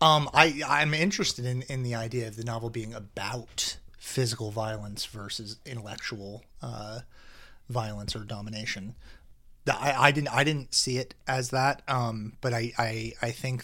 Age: 30-49